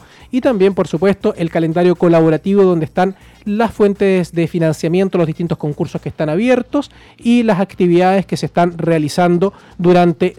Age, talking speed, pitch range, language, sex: 20-39, 155 wpm, 170-215 Hz, Spanish, male